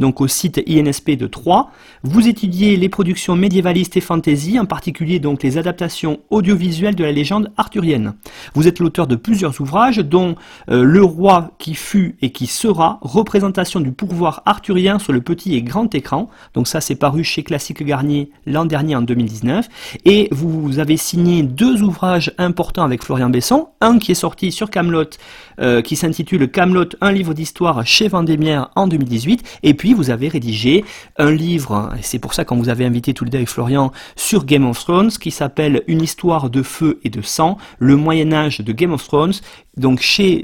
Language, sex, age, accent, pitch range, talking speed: French, male, 40-59, French, 135-180 Hz, 190 wpm